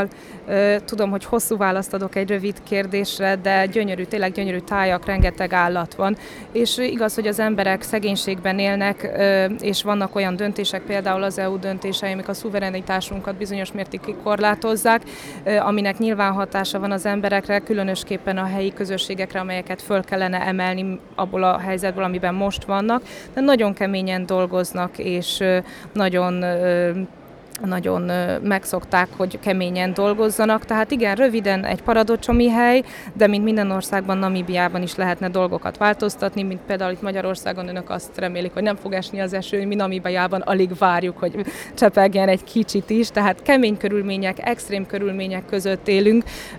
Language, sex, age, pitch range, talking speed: Hungarian, female, 20-39, 185-210 Hz, 145 wpm